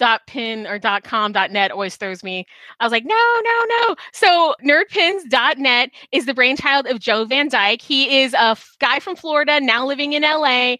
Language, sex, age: English, female, 20-39